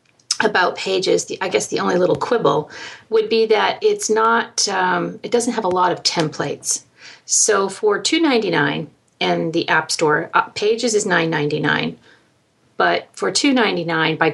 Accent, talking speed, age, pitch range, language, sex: American, 150 wpm, 40-59, 165-220 Hz, English, female